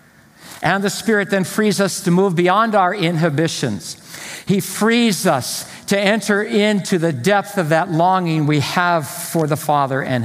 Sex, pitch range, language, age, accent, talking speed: male, 140-195 Hz, English, 60-79, American, 165 wpm